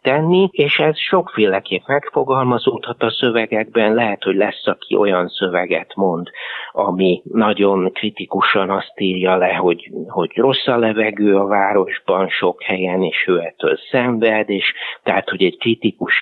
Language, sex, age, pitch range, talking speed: Hungarian, male, 60-79, 100-120 Hz, 140 wpm